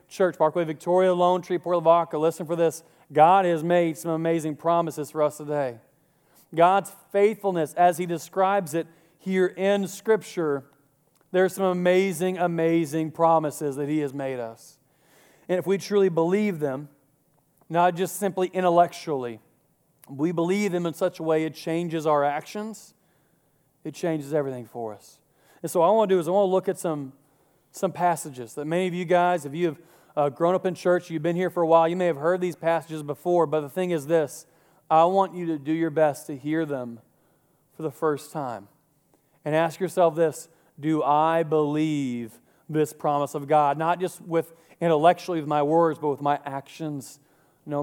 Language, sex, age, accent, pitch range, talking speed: English, male, 40-59, American, 150-175 Hz, 185 wpm